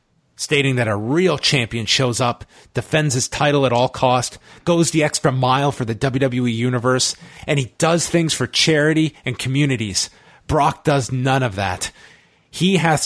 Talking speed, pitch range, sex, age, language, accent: 165 wpm, 120-155 Hz, male, 30-49, English, American